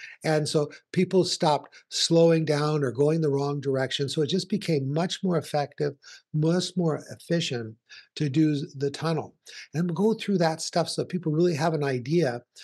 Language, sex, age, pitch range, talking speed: English, male, 60-79, 135-170 Hz, 170 wpm